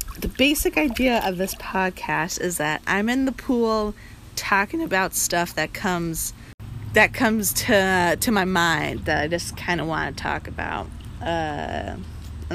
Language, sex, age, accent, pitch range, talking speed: English, female, 20-39, American, 170-235 Hz, 160 wpm